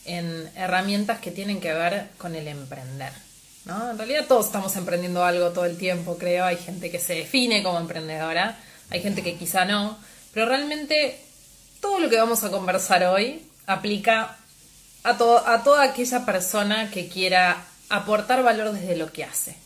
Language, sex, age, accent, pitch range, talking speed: Spanish, female, 20-39, Argentinian, 175-220 Hz, 170 wpm